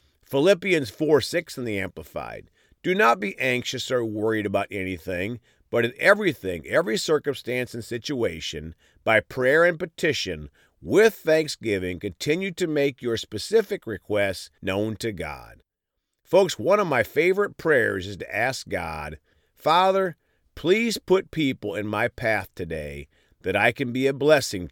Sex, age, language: male, 50-69, English